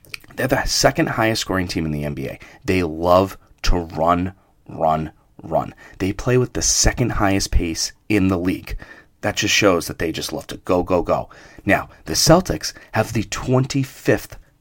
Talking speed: 175 wpm